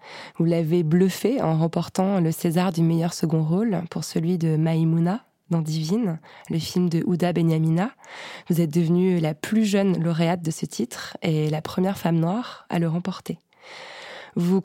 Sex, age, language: female, 20-39, French